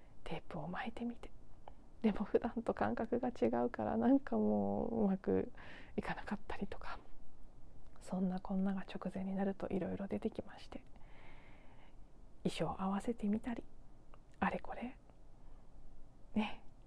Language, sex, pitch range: Japanese, female, 185-235 Hz